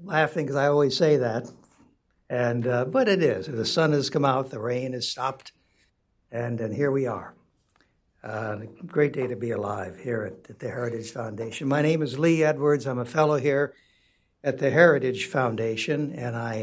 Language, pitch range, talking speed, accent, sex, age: English, 115-155 Hz, 190 wpm, American, male, 60-79